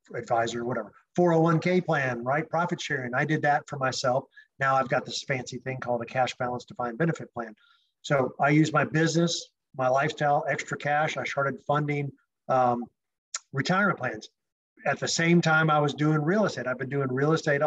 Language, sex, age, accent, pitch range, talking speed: English, male, 50-69, American, 130-165 Hz, 185 wpm